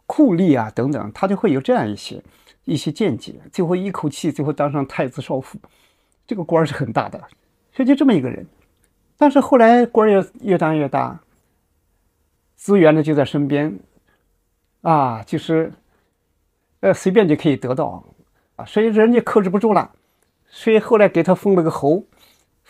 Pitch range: 130-185 Hz